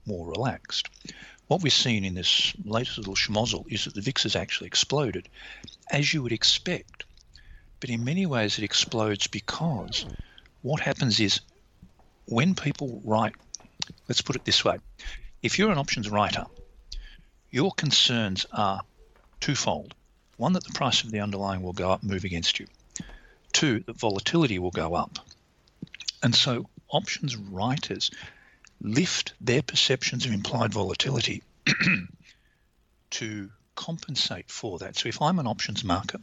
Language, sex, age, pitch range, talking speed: English, male, 50-69, 95-125 Hz, 145 wpm